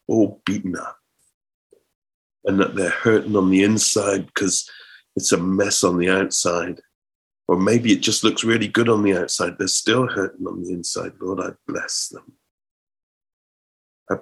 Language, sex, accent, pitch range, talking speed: English, male, British, 95-110 Hz, 160 wpm